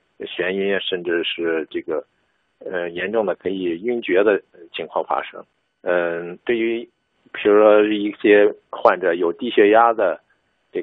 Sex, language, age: male, Chinese, 50-69